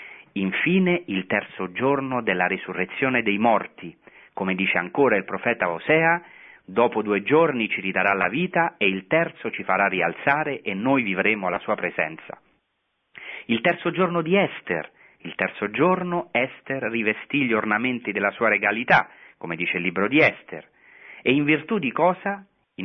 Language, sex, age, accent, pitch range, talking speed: Italian, male, 40-59, native, 100-160 Hz, 160 wpm